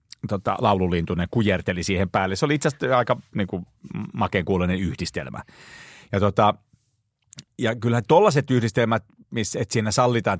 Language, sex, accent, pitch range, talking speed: Finnish, male, native, 95-120 Hz, 135 wpm